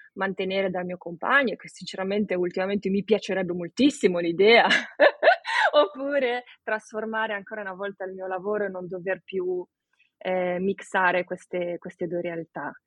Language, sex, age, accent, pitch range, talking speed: Italian, female, 20-39, native, 175-205 Hz, 135 wpm